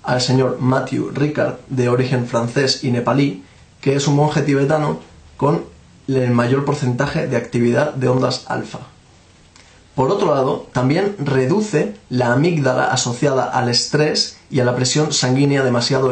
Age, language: 20-39, Spanish